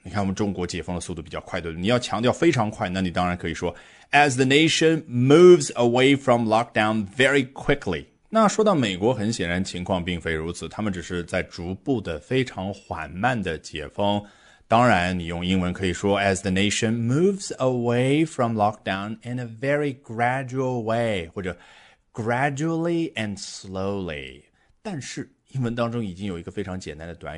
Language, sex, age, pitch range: Chinese, male, 30-49, 90-125 Hz